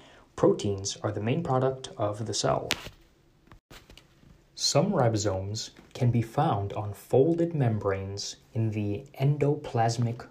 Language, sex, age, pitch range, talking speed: English, male, 20-39, 105-135 Hz, 110 wpm